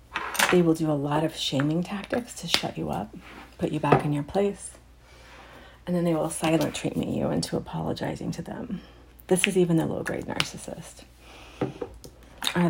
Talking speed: 170 wpm